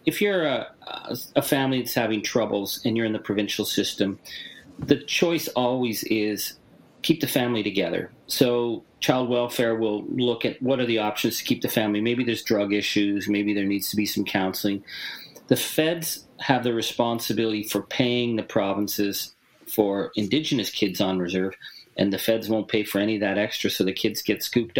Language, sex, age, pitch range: English, male, 40-59, 105-135 Hz